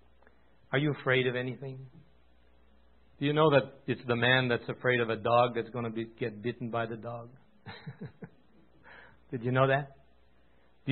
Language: English